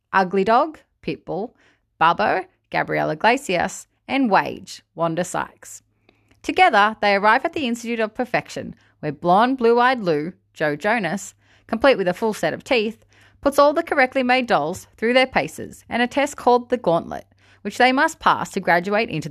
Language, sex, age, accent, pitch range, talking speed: English, female, 30-49, Australian, 165-245 Hz, 160 wpm